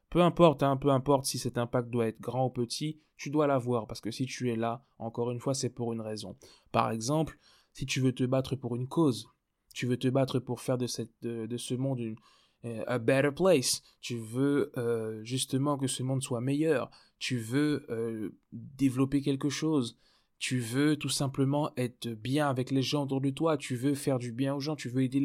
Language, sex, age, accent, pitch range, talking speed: French, male, 20-39, French, 125-150 Hz, 220 wpm